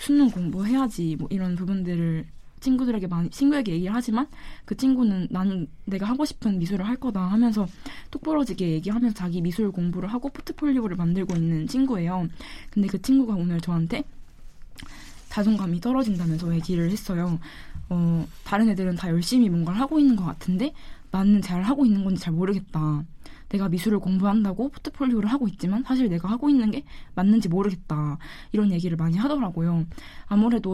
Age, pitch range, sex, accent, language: 10-29, 175-235 Hz, female, native, Korean